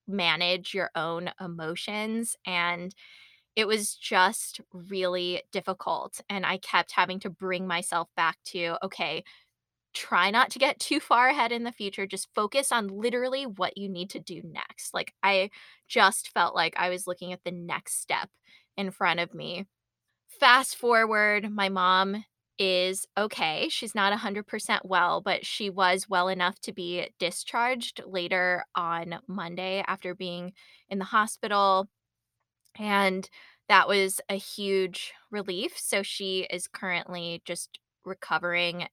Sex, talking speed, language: female, 150 wpm, English